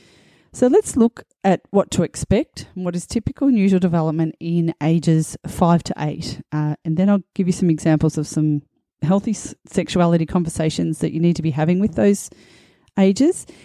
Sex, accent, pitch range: female, Australian, 160-190 Hz